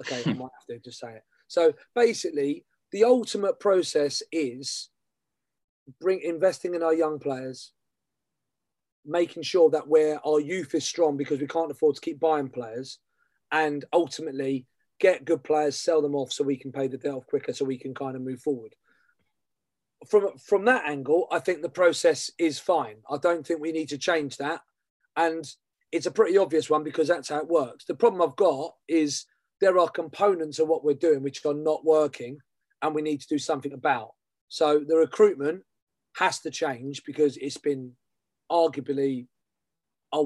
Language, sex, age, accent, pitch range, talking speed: English, male, 30-49, British, 145-175 Hz, 180 wpm